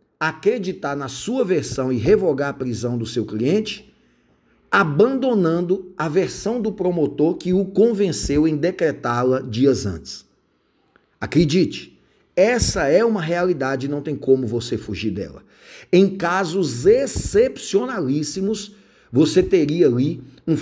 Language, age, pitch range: Portuguese, 50-69, 130-190 Hz